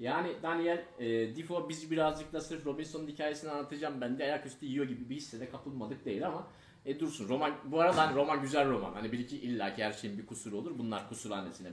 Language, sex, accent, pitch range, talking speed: Turkish, male, native, 120-155 Hz, 210 wpm